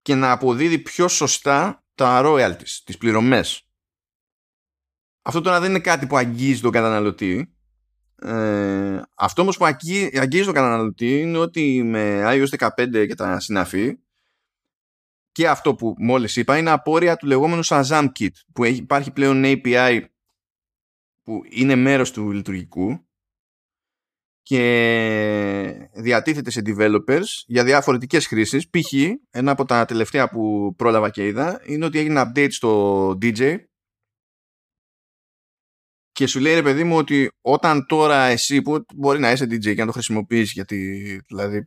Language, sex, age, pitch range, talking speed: Greek, male, 20-39, 105-145 Hz, 140 wpm